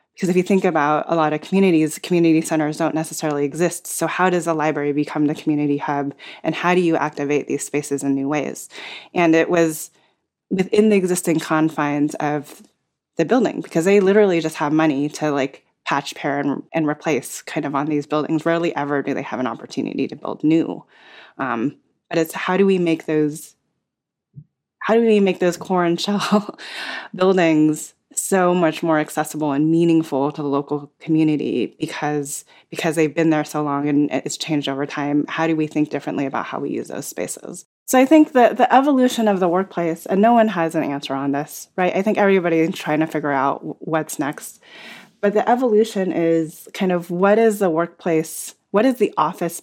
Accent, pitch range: American, 150-185 Hz